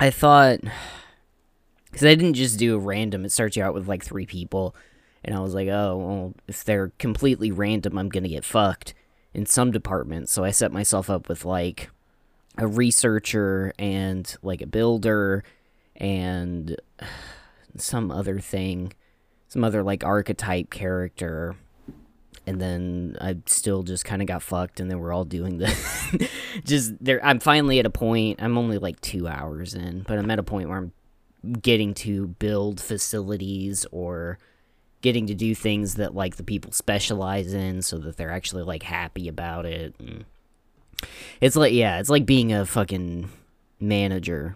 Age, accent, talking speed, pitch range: 10-29, American, 165 wpm, 90-110 Hz